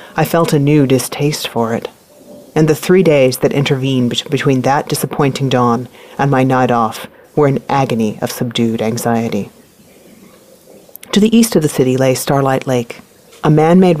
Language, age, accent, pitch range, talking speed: English, 40-59, American, 125-155 Hz, 165 wpm